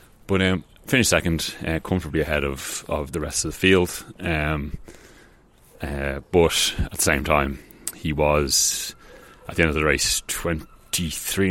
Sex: male